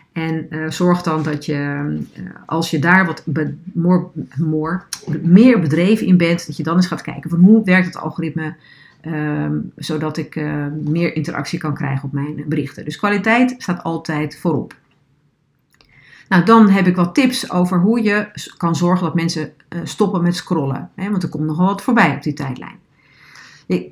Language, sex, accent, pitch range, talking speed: Dutch, female, Dutch, 150-180 Hz, 175 wpm